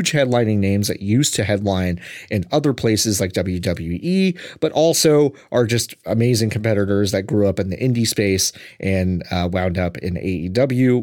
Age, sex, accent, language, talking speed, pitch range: 30-49, male, American, English, 165 wpm, 95-125 Hz